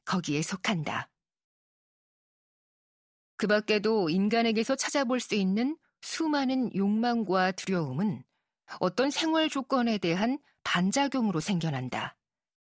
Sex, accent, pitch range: female, native, 185-255 Hz